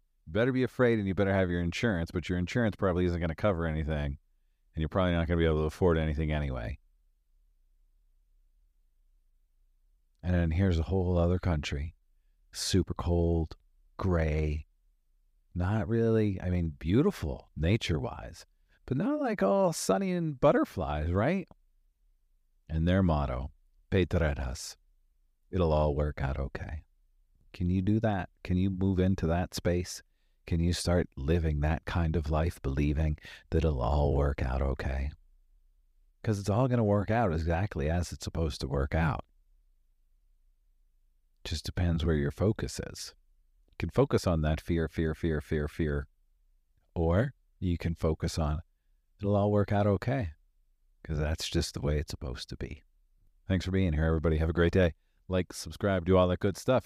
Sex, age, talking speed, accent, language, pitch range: male, 40-59, 165 wpm, American, English, 75-90 Hz